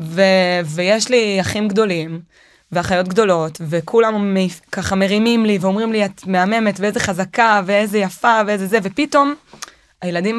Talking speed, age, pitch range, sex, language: 140 wpm, 20-39, 185-235 Hz, female, Hebrew